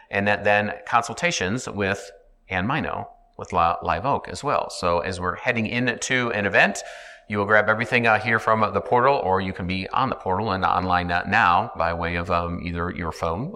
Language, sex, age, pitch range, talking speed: English, male, 40-59, 85-105 Hz, 205 wpm